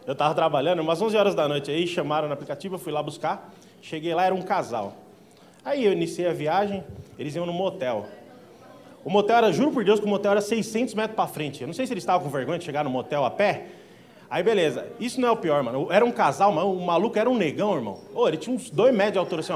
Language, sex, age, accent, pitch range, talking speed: Portuguese, male, 20-39, Brazilian, 185-265 Hz, 265 wpm